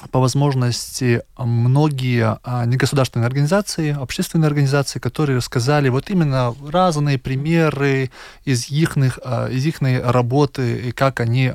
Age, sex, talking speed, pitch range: 20-39, male, 90 wpm, 125-160 Hz